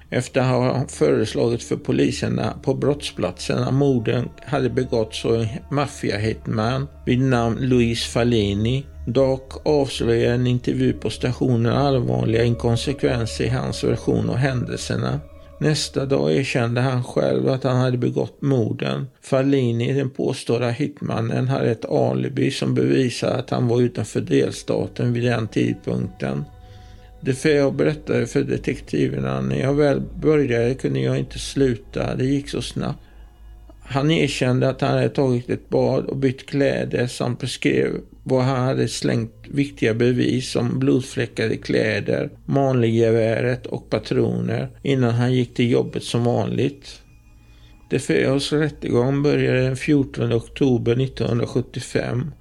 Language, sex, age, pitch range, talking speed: Swedish, male, 50-69, 110-135 Hz, 135 wpm